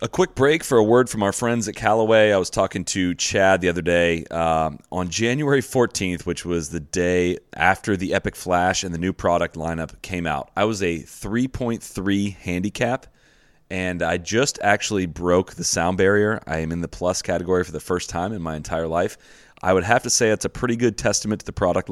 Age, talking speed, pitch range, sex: 30-49, 215 wpm, 90-110 Hz, male